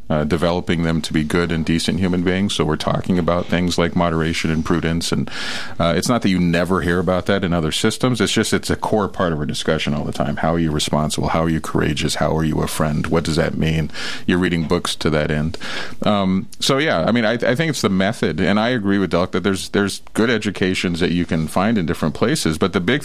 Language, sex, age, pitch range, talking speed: English, male, 40-59, 80-95 Hz, 255 wpm